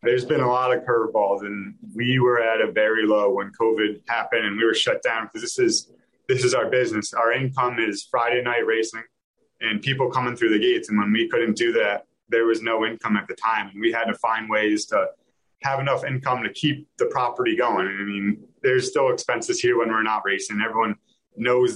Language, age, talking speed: English, 30-49, 220 wpm